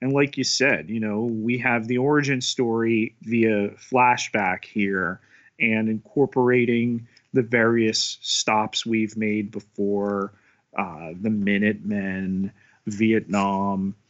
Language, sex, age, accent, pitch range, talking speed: English, male, 30-49, American, 105-125 Hz, 110 wpm